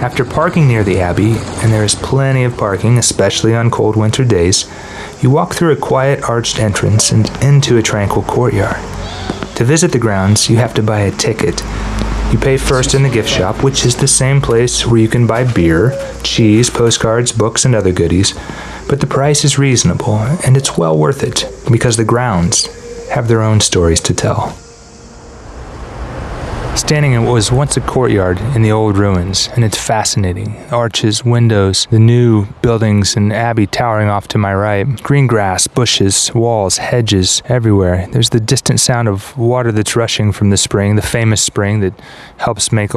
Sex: male